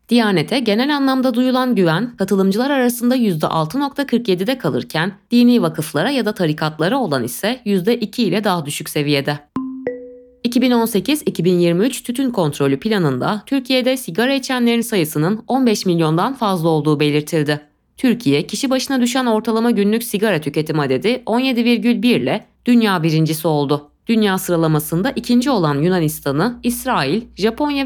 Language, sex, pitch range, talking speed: Turkish, female, 160-245 Hz, 120 wpm